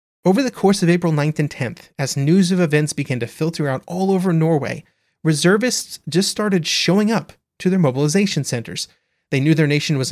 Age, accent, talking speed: 30-49, American, 195 wpm